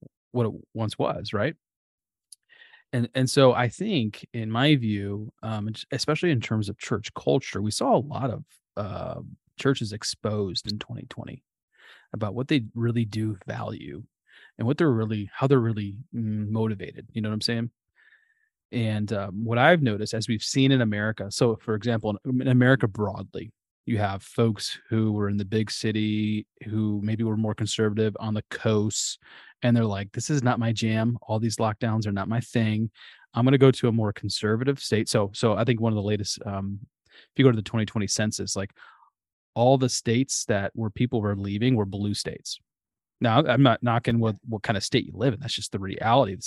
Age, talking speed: 20-39, 200 wpm